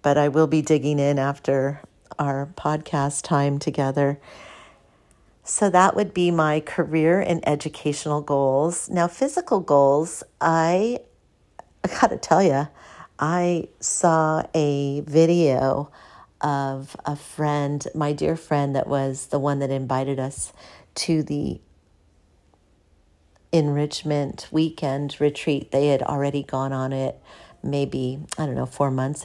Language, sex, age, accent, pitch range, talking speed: English, female, 50-69, American, 140-160 Hz, 125 wpm